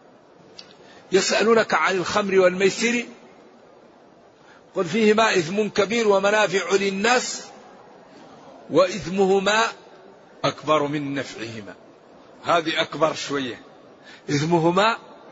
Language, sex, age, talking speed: Arabic, male, 50-69, 70 wpm